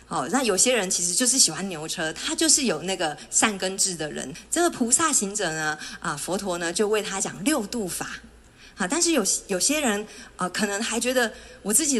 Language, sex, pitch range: Chinese, female, 180-250 Hz